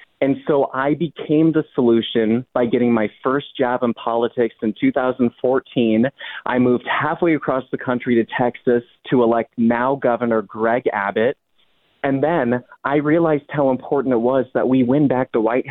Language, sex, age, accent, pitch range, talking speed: English, male, 30-49, American, 120-145 Hz, 165 wpm